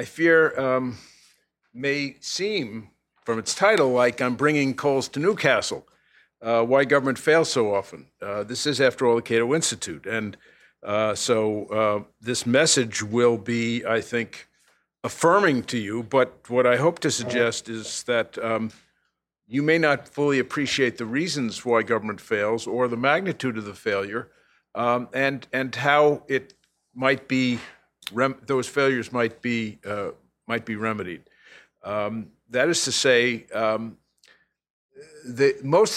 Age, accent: 50-69, American